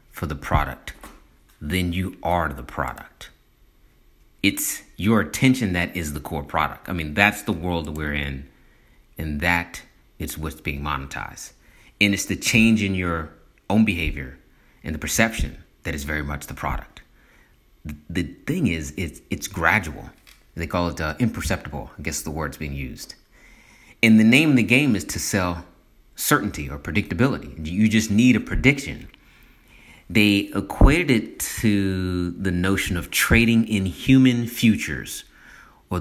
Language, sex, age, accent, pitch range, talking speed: English, male, 30-49, American, 75-100 Hz, 155 wpm